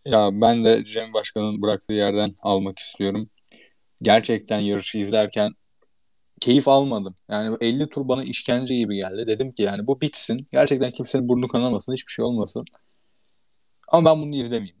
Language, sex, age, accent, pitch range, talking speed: Turkish, male, 30-49, native, 110-150 Hz, 150 wpm